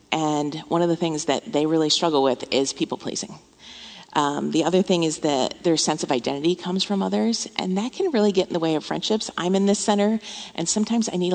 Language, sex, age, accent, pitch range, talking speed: English, female, 40-59, American, 150-195 Hz, 220 wpm